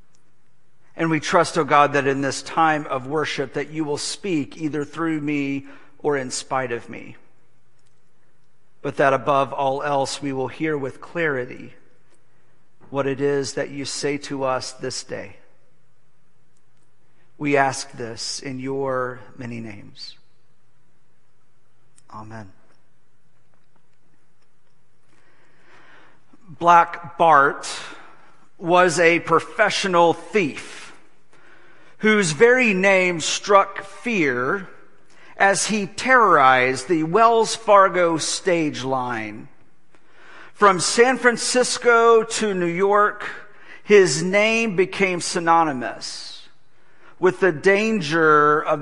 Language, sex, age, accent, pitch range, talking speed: English, male, 50-69, American, 135-190 Hz, 105 wpm